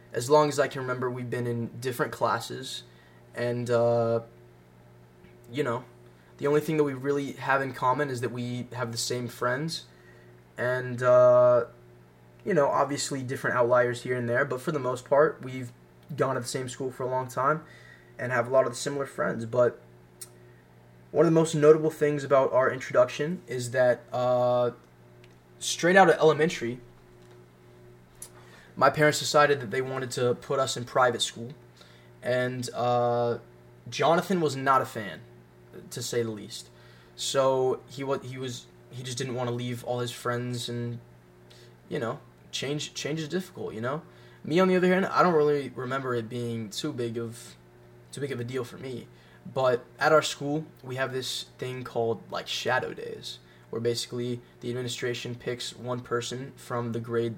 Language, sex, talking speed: English, male, 175 wpm